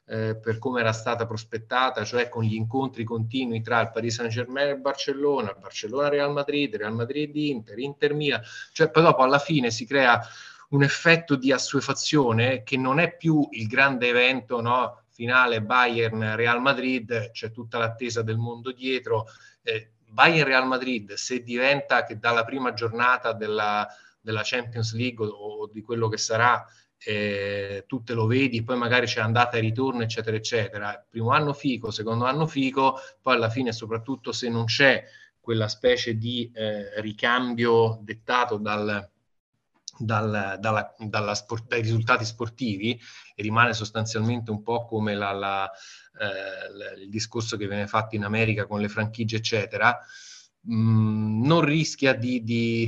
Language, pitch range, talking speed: Italian, 110-130 Hz, 155 wpm